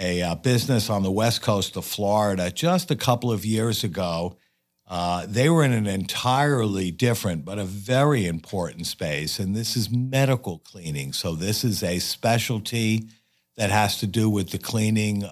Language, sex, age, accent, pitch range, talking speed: English, male, 50-69, American, 85-115 Hz, 170 wpm